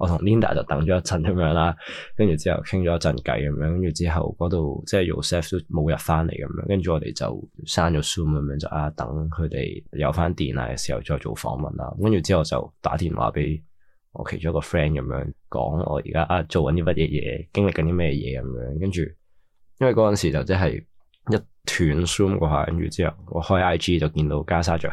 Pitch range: 75-90 Hz